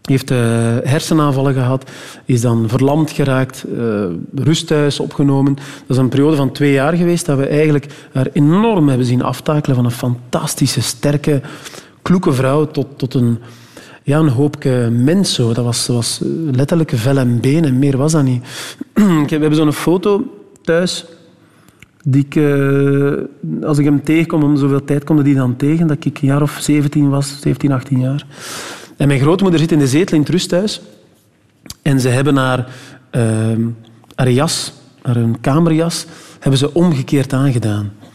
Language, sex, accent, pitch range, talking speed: Dutch, male, Dutch, 135-160 Hz, 165 wpm